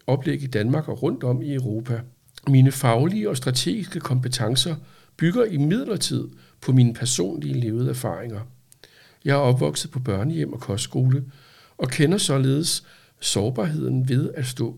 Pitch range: 115-145 Hz